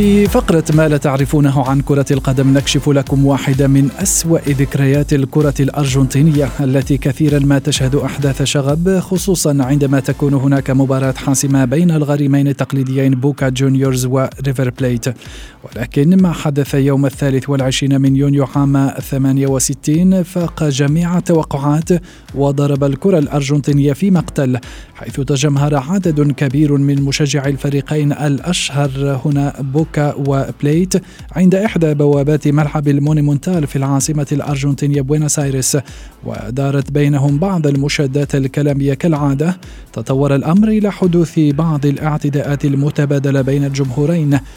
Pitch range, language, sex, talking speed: 140-155 Hz, Arabic, male, 120 wpm